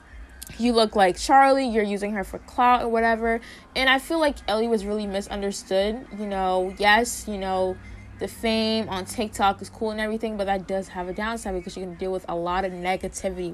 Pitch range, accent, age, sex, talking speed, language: 185-240 Hz, American, 20-39, female, 210 wpm, English